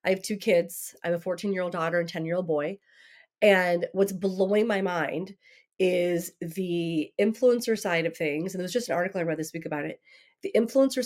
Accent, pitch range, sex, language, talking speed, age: American, 170-205 Hz, female, English, 195 wpm, 30-49